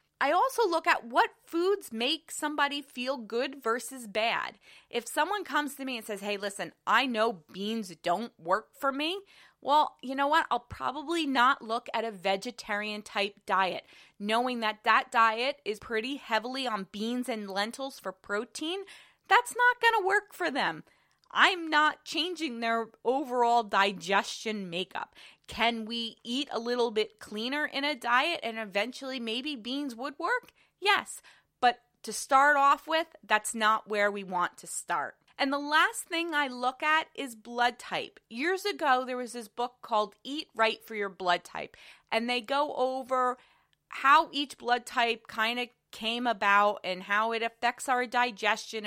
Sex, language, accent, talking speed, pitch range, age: female, English, American, 170 wpm, 215-285 Hz, 20-39